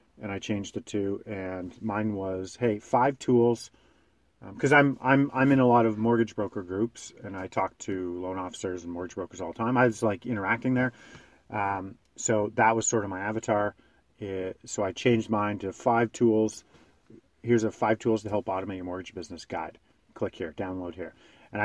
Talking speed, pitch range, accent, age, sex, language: 200 wpm, 95-115 Hz, American, 40-59, male, English